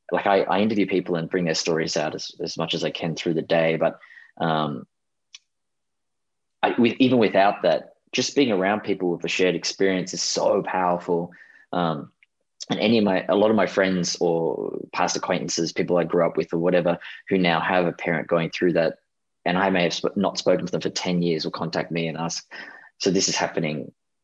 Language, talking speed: English, 210 wpm